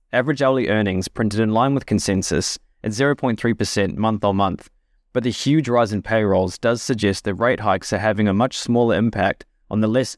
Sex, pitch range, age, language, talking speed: male, 100-120 Hz, 20-39, English, 185 wpm